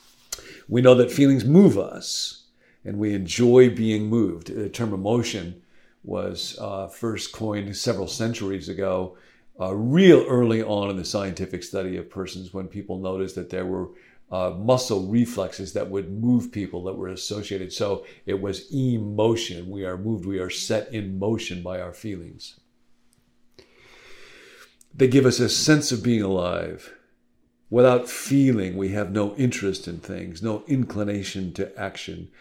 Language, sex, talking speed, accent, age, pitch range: English, male, 150 wpm, American, 50-69, 95-120 Hz